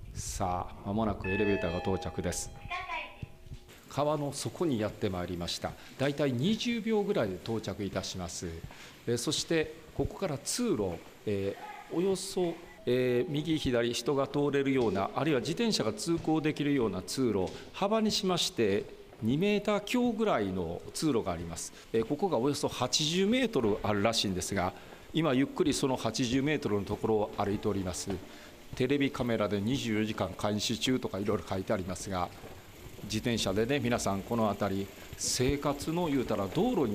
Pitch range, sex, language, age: 100-145 Hz, male, Japanese, 40-59